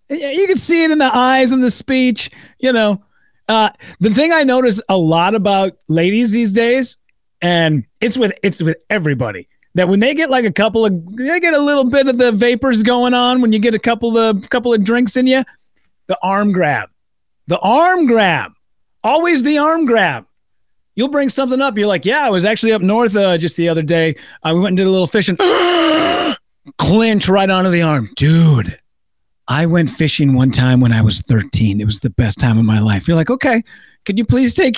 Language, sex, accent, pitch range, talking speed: English, male, American, 170-255 Hz, 215 wpm